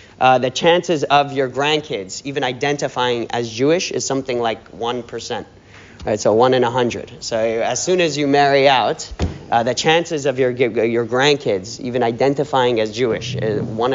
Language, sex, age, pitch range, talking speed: English, male, 30-49, 130-160 Hz, 175 wpm